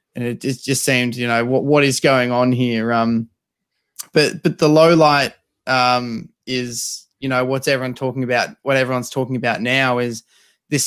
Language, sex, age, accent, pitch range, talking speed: English, male, 20-39, Australian, 125-145 Hz, 180 wpm